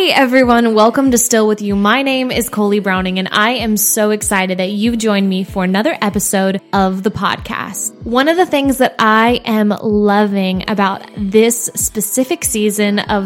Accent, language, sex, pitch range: American, English, female, 195-235 Hz